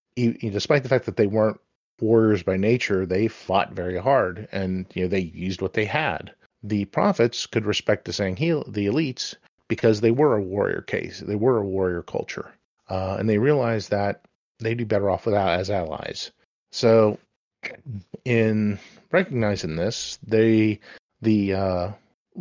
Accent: American